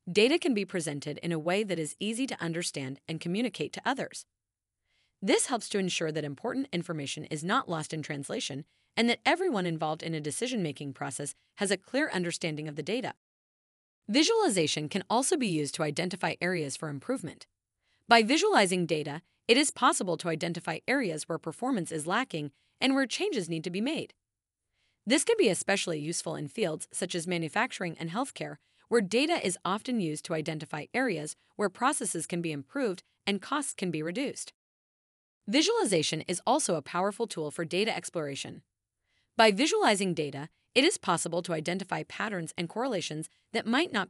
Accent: American